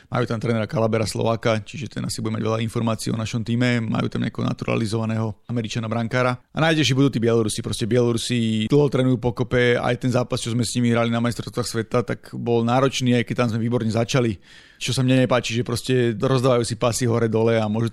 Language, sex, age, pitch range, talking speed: Slovak, male, 30-49, 115-125 Hz, 210 wpm